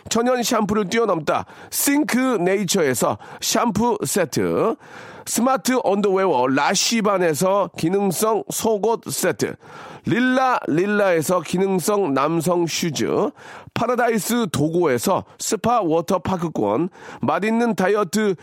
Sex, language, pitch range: male, Korean, 170-235 Hz